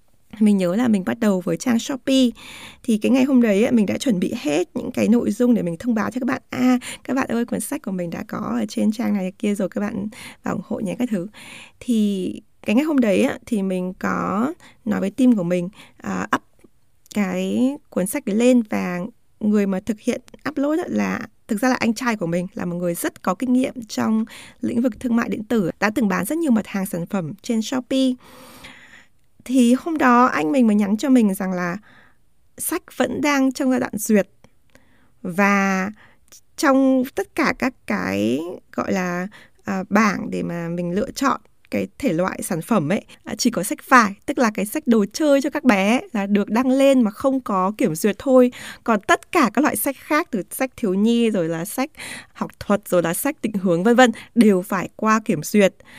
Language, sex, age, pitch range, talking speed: Vietnamese, female, 20-39, 200-255 Hz, 220 wpm